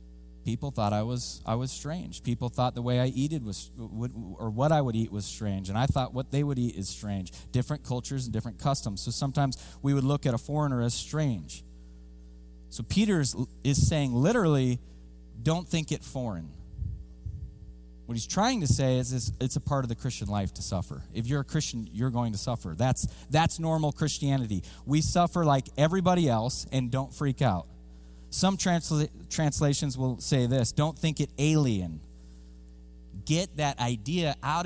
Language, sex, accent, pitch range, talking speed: English, male, American, 100-150 Hz, 180 wpm